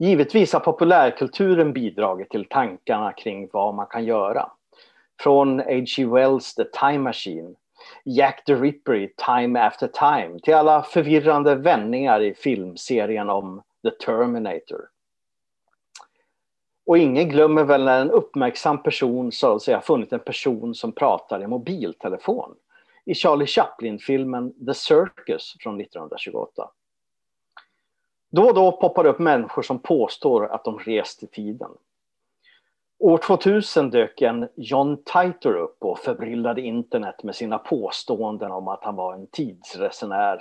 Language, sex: English, male